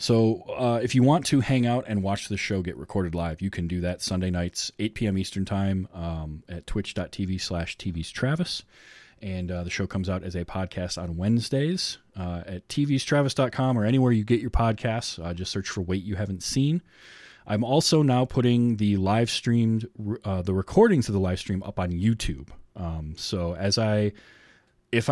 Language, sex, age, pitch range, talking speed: English, male, 30-49, 90-120 Hz, 195 wpm